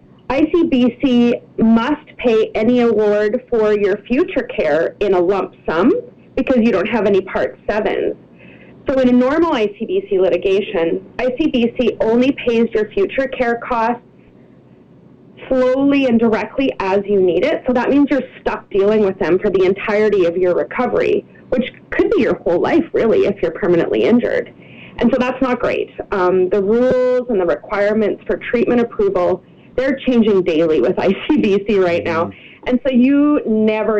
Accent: American